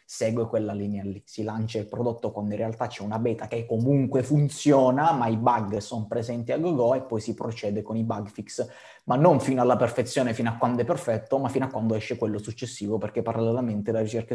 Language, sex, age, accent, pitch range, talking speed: Italian, male, 20-39, native, 115-140 Hz, 220 wpm